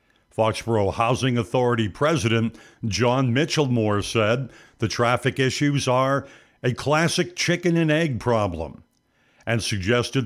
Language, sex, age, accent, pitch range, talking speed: English, male, 60-79, American, 115-145 Hz, 105 wpm